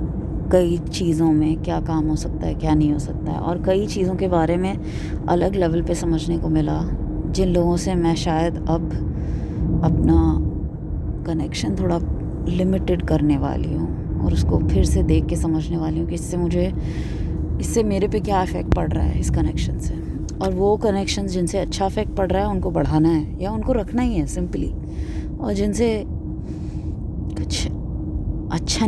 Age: 20-39